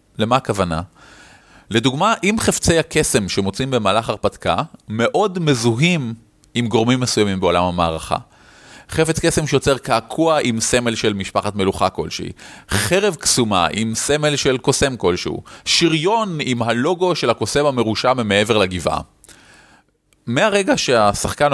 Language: Hebrew